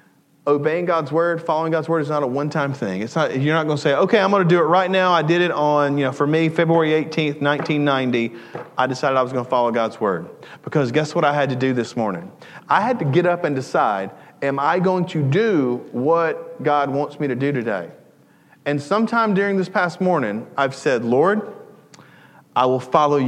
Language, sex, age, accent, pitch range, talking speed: English, male, 40-59, American, 120-165 Hz, 225 wpm